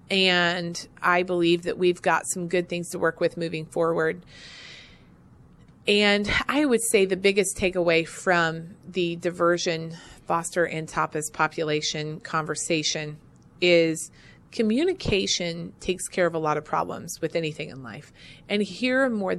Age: 30-49